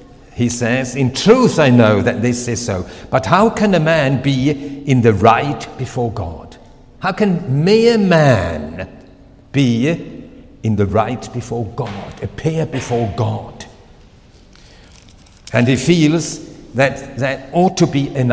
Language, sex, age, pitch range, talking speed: English, male, 60-79, 115-145 Hz, 140 wpm